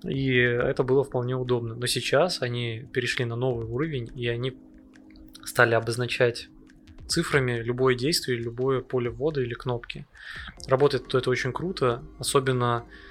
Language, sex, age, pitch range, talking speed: Russian, male, 20-39, 115-130 Hz, 135 wpm